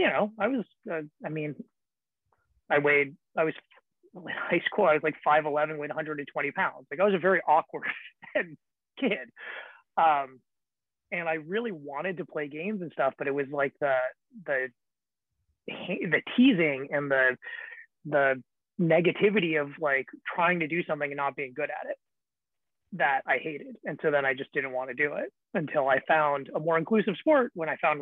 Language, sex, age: English, male, 30-49